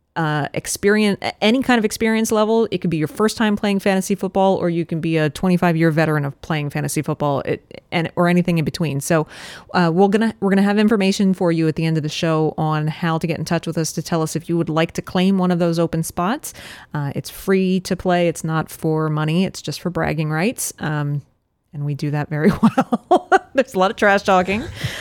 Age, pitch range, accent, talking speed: 30-49, 160-195 Hz, American, 235 wpm